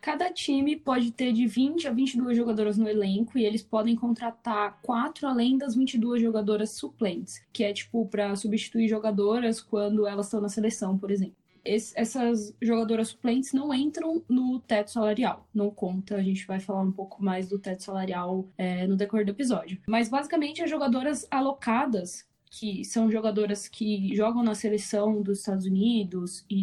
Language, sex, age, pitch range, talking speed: Portuguese, female, 10-29, 205-240 Hz, 170 wpm